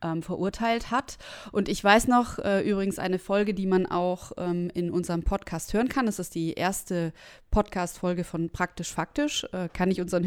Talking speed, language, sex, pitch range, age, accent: 180 wpm, German, female, 180-220 Hz, 20-39, German